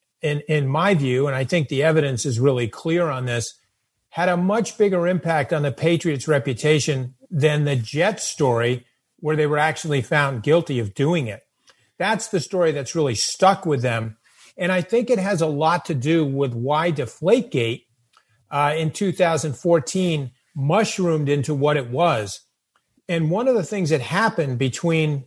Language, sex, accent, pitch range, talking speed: English, male, American, 135-180 Hz, 170 wpm